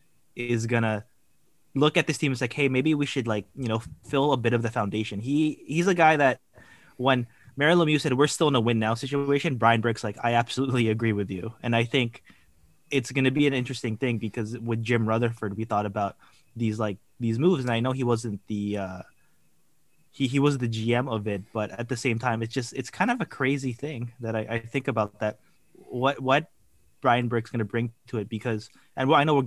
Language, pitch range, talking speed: English, 110-135 Hz, 230 wpm